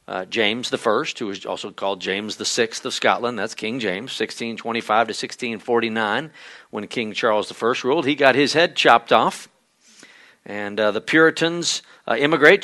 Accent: American